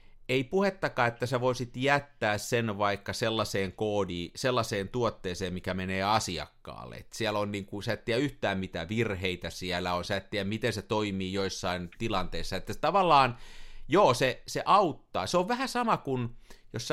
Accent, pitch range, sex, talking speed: native, 100-130 Hz, male, 170 wpm